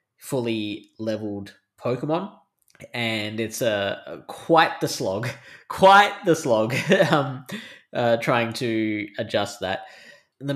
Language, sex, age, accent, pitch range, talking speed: English, male, 10-29, Australian, 110-145 Hz, 110 wpm